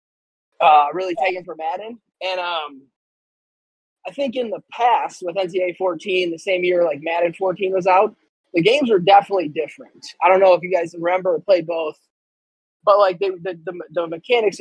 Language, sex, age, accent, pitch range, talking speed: English, male, 20-39, American, 160-195 Hz, 185 wpm